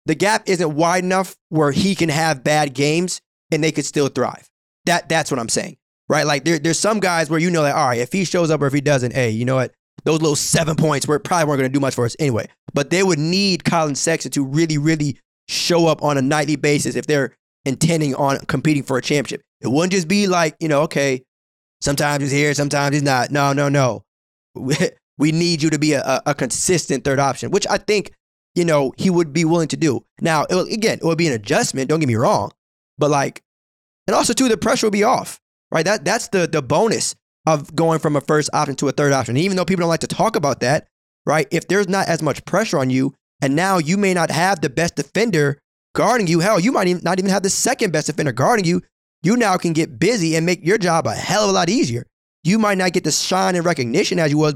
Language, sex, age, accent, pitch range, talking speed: English, male, 20-39, American, 145-180 Hz, 250 wpm